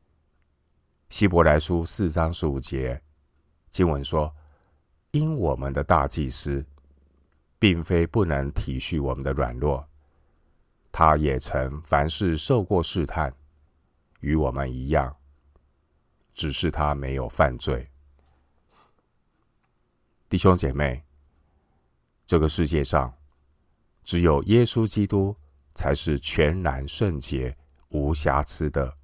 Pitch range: 70-80 Hz